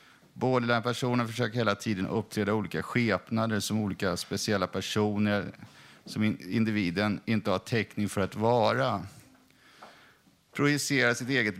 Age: 50-69